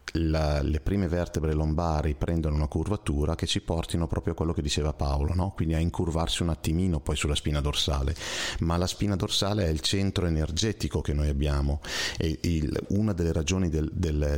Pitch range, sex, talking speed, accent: 75-95 Hz, male, 190 wpm, native